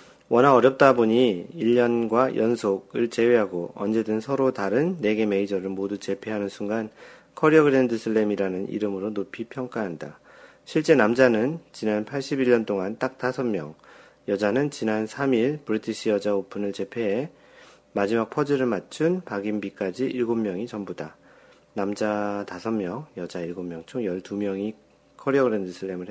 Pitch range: 100-125 Hz